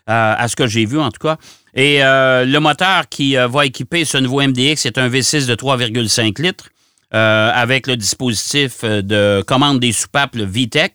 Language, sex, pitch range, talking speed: French, male, 110-145 Hz, 185 wpm